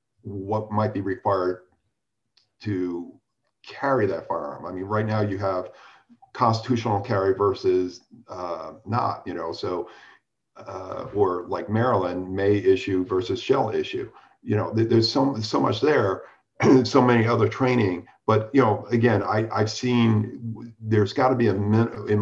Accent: American